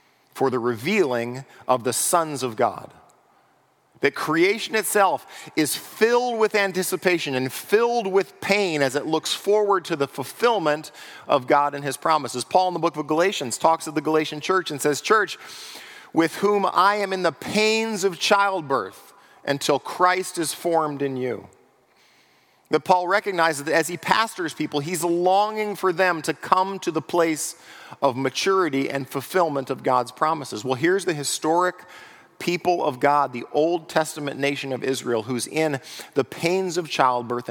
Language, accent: English, American